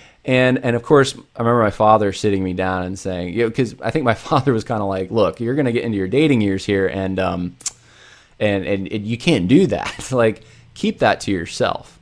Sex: male